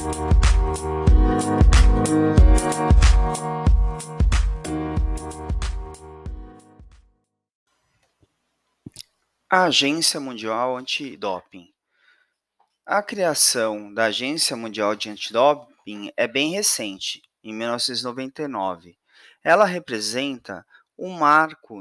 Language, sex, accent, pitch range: Portuguese, male, Brazilian, 105-150 Hz